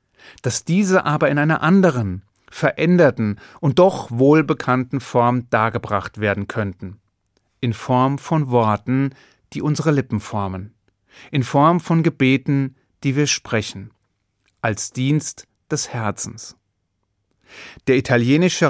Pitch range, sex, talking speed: 115-160 Hz, male, 110 wpm